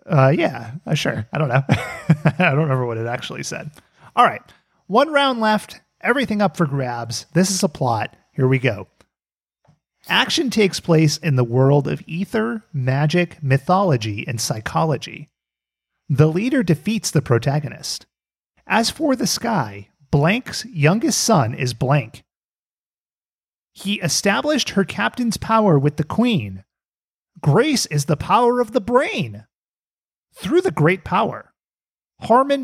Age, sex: 30-49, male